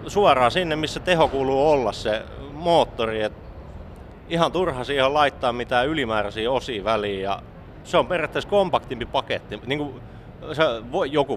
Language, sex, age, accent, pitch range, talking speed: Finnish, male, 30-49, native, 105-135 Hz, 130 wpm